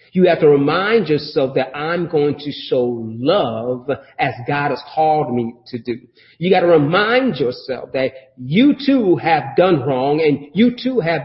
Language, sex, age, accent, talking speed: English, male, 40-59, American, 175 wpm